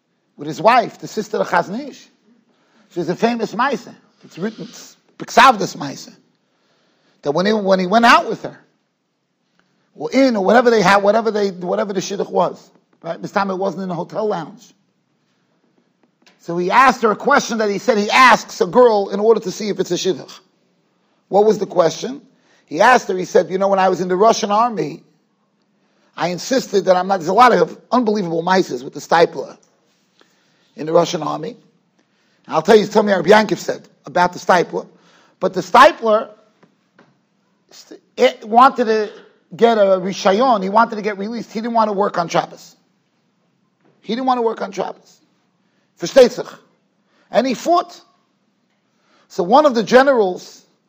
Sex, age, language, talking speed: male, 40-59, English, 175 wpm